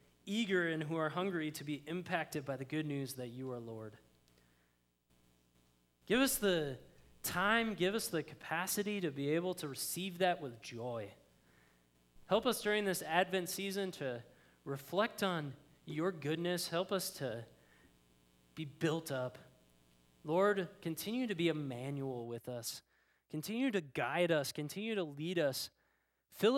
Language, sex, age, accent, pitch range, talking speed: English, male, 20-39, American, 115-180 Hz, 150 wpm